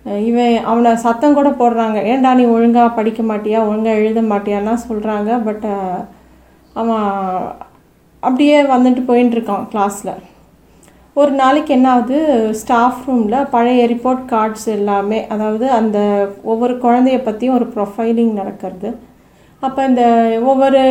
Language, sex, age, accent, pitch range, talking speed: Tamil, female, 30-49, native, 215-255 Hz, 115 wpm